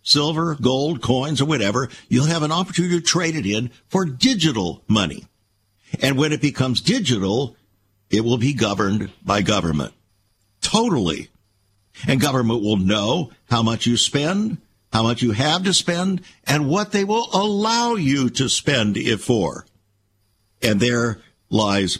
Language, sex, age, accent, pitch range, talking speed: English, male, 60-79, American, 100-150 Hz, 150 wpm